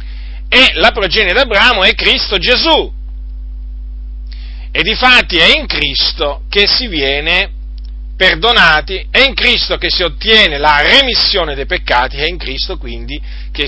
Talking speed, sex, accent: 140 wpm, male, native